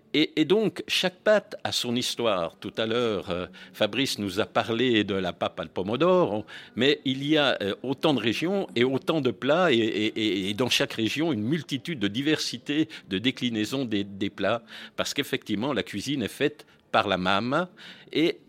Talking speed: 170 wpm